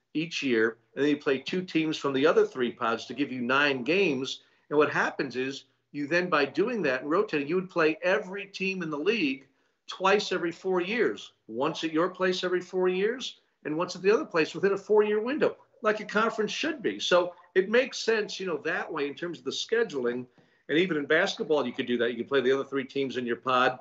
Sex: male